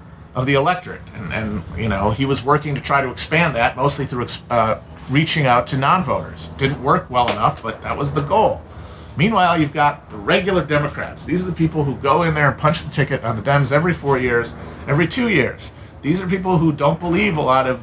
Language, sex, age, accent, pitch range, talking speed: English, male, 40-59, American, 115-160 Hz, 225 wpm